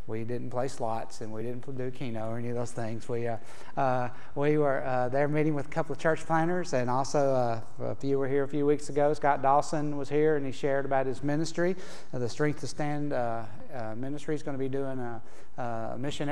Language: English